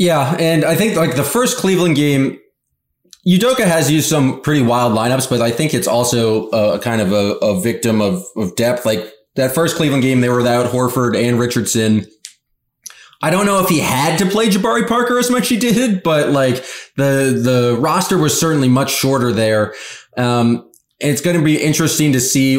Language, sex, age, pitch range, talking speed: English, male, 20-39, 120-155 Hz, 200 wpm